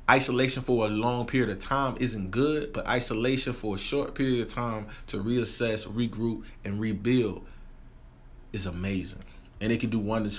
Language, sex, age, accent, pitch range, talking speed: English, male, 20-39, American, 100-120 Hz, 170 wpm